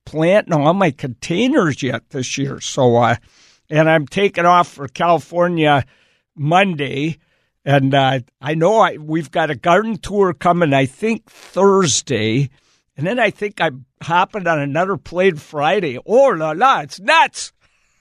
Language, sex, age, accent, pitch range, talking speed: English, male, 60-79, American, 140-190 Hz, 150 wpm